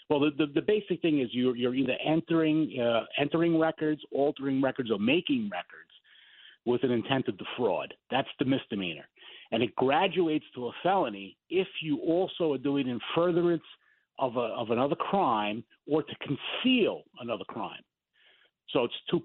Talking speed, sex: 170 wpm, male